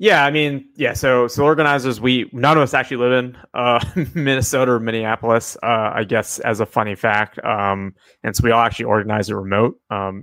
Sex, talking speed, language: male, 205 wpm, English